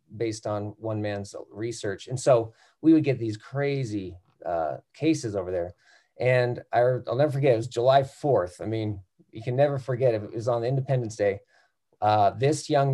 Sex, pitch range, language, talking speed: male, 110-135 Hz, English, 180 wpm